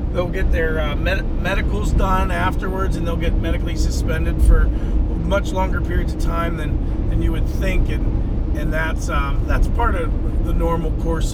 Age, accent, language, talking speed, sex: 40-59, American, English, 180 wpm, male